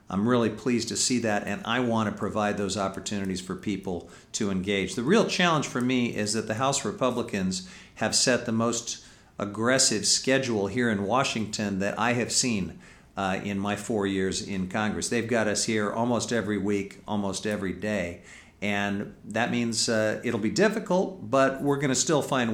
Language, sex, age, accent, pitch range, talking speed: English, male, 50-69, American, 100-115 Hz, 185 wpm